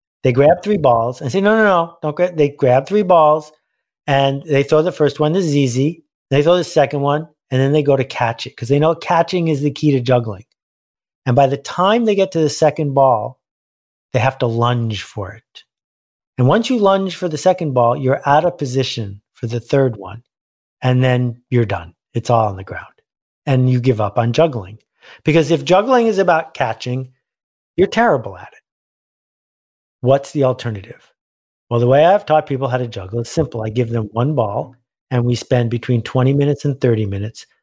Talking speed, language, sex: 205 wpm, English, male